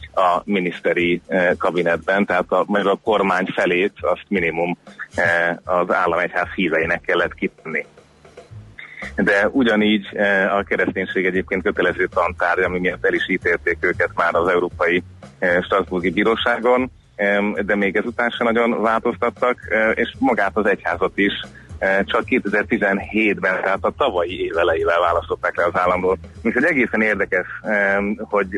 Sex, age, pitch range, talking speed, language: male, 30-49, 90-110 Hz, 125 wpm, Hungarian